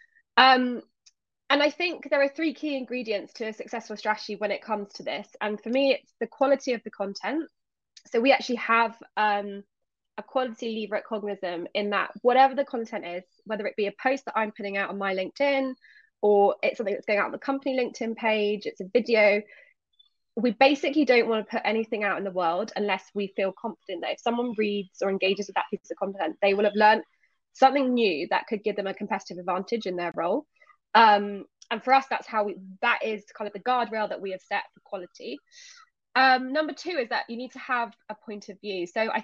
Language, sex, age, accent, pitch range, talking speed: English, female, 20-39, British, 200-260 Hz, 220 wpm